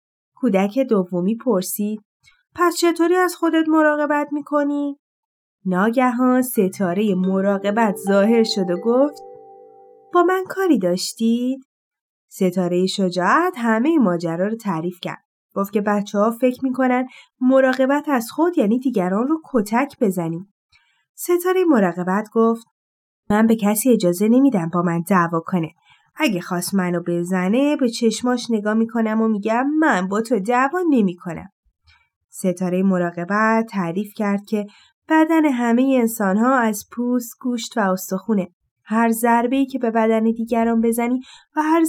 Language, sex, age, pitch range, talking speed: Persian, female, 30-49, 195-295 Hz, 135 wpm